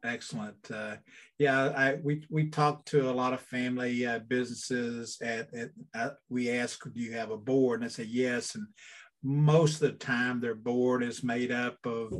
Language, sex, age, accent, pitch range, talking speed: English, male, 50-69, American, 120-150 Hz, 180 wpm